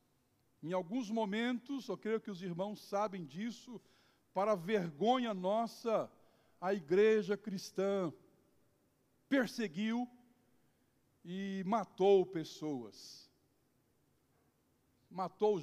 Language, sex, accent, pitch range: Portuguese, male, Brazilian, 170-215 Hz